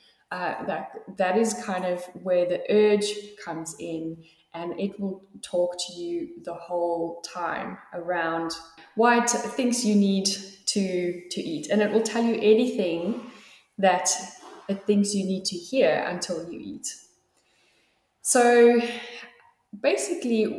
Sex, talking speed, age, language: female, 135 wpm, 10-29, English